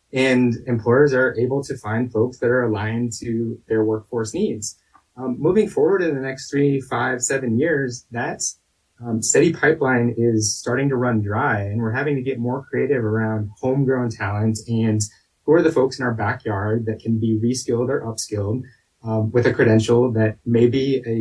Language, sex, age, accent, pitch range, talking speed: English, male, 20-39, American, 110-130 Hz, 180 wpm